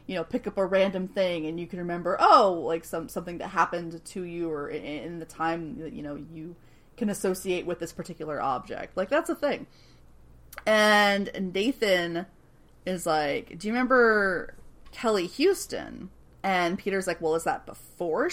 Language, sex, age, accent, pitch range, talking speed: English, female, 30-49, American, 160-210 Hz, 175 wpm